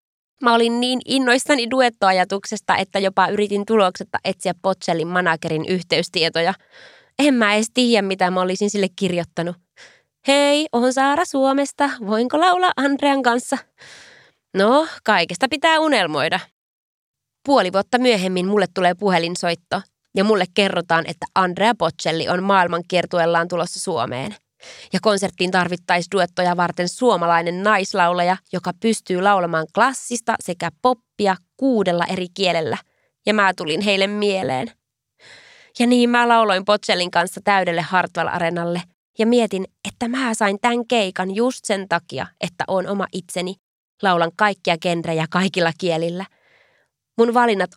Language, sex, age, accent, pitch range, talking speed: Finnish, female, 20-39, native, 180-230 Hz, 125 wpm